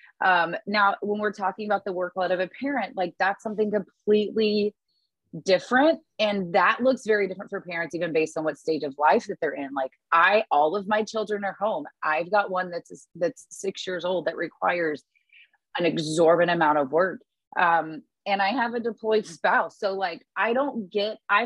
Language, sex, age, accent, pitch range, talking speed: English, female, 30-49, American, 170-225 Hz, 195 wpm